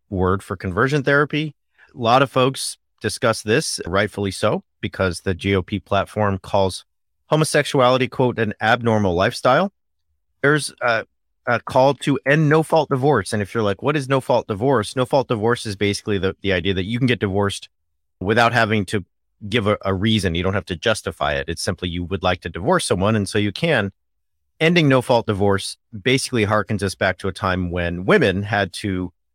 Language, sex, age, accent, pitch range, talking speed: English, male, 40-59, American, 95-130 Hz, 180 wpm